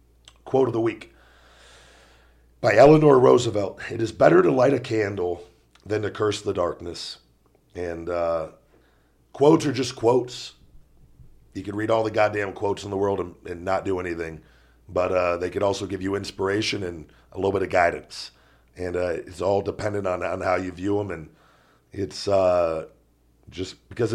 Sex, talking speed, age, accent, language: male, 175 wpm, 50-69, American, English